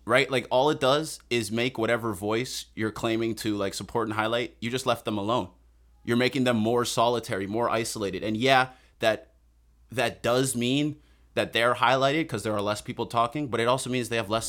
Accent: American